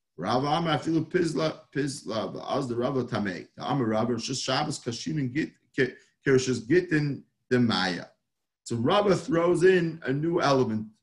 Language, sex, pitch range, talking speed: English, male, 120-150 Hz, 60 wpm